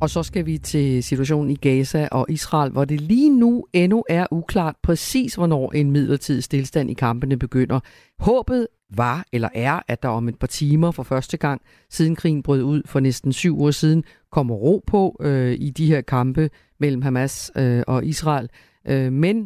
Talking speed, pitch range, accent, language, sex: 180 wpm, 130-160 Hz, native, Danish, female